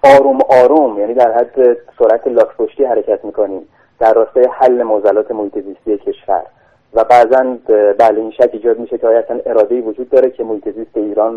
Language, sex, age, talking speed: Persian, male, 30-49, 165 wpm